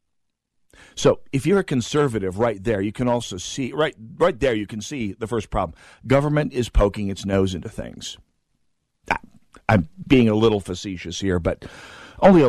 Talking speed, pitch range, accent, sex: 175 wpm, 100-130 Hz, American, male